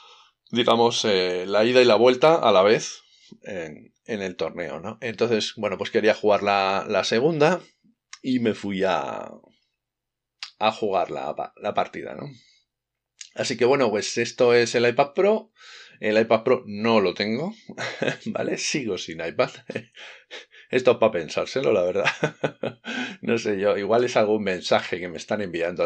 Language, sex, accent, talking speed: Spanish, male, Spanish, 160 wpm